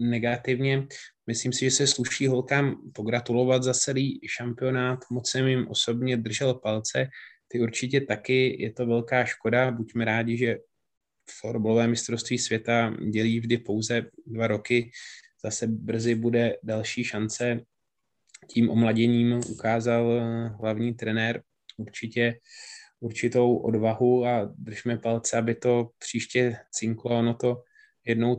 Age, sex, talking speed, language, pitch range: 20-39, male, 125 wpm, Czech, 110-120 Hz